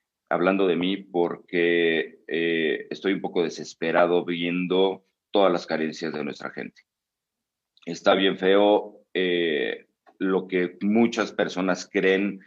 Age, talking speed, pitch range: 40-59, 120 wpm, 90-105 Hz